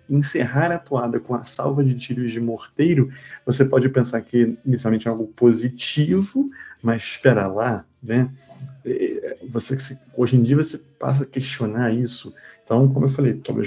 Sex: male